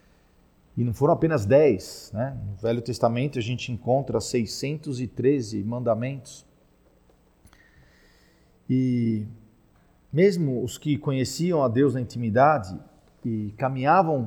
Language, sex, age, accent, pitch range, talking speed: Portuguese, male, 40-59, Brazilian, 120-155 Hz, 105 wpm